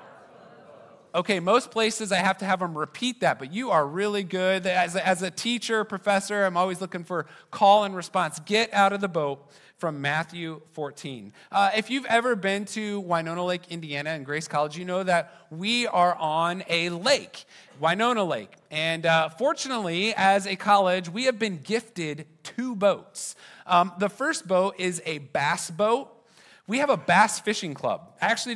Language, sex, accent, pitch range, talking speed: English, male, American, 155-205 Hz, 185 wpm